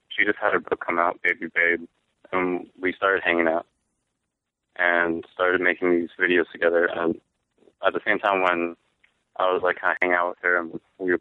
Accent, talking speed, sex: American, 205 wpm, male